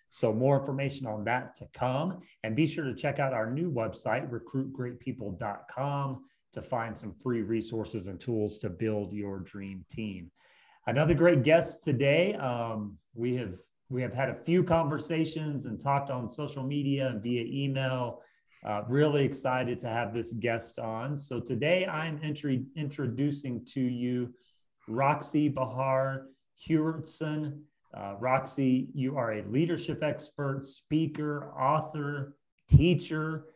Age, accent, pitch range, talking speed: 30-49, American, 120-145 Hz, 140 wpm